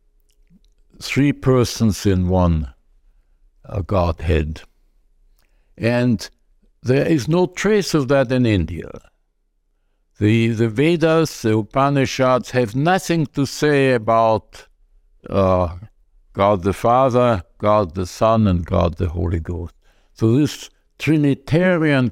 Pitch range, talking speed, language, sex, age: 90-135 Hz, 110 wpm, English, male, 60-79